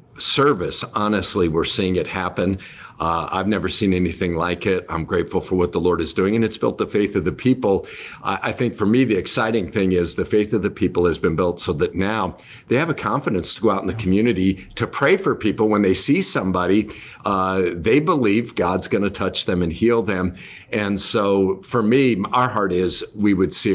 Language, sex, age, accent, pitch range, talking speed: English, male, 50-69, American, 90-110 Hz, 220 wpm